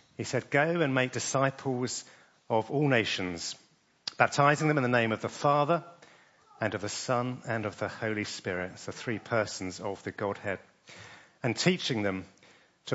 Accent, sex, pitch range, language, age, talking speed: British, male, 105-145 Hz, English, 40-59, 165 wpm